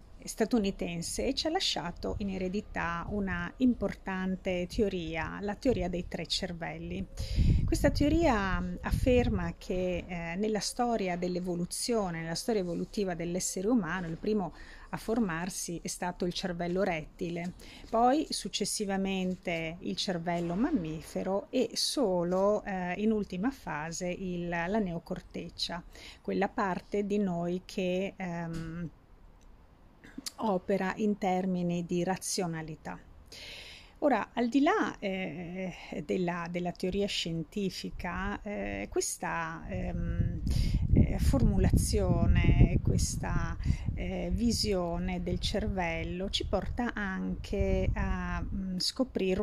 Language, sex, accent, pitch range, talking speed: Italian, female, native, 170-205 Hz, 100 wpm